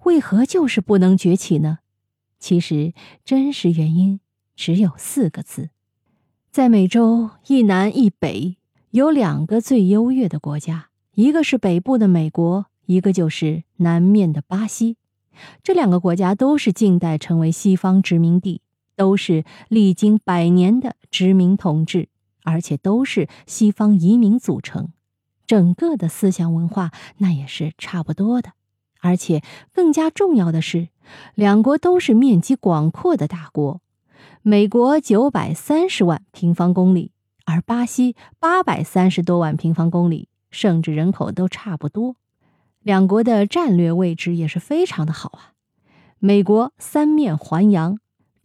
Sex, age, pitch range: female, 20-39, 170-225 Hz